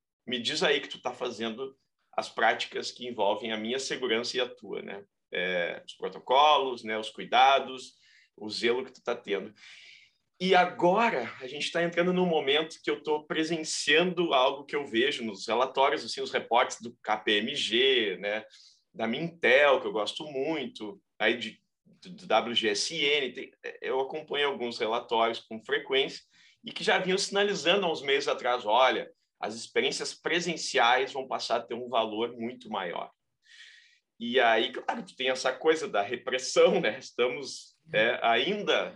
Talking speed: 160 wpm